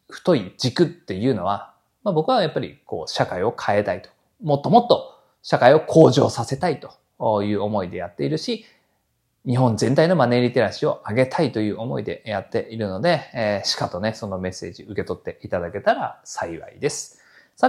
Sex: male